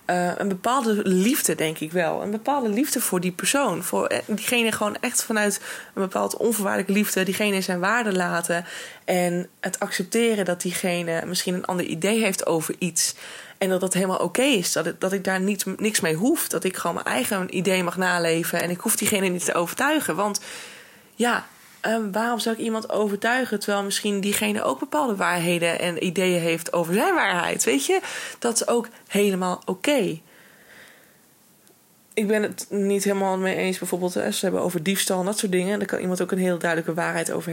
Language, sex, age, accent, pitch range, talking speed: Dutch, female, 20-39, Dutch, 180-210 Hz, 195 wpm